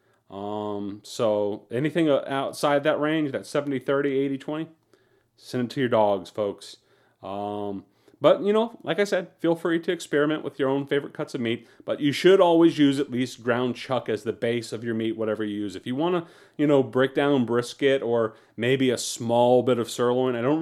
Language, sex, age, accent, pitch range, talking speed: English, male, 40-59, American, 110-140 Hz, 205 wpm